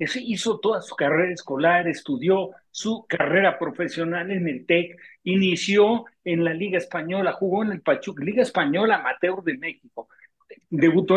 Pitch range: 165-230 Hz